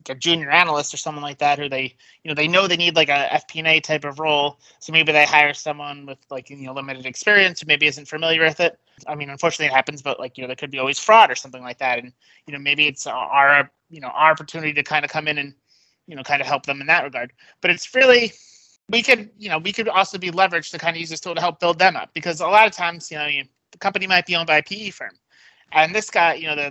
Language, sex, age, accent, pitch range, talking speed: English, male, 30-49, American, 145-175 Hz, 285 wpm